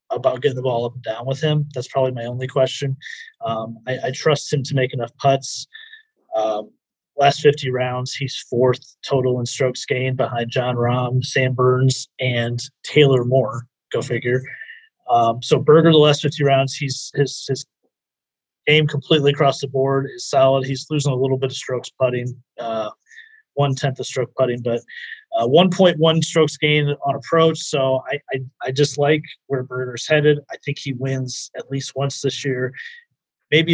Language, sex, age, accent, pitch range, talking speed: English, male, 30-49, American, 130-160 Hz, 180 wpm